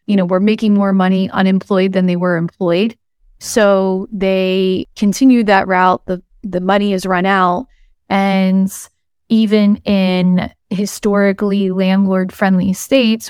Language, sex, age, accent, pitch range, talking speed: English, female, 30-49, American, 185-210 Hz, 130 wpm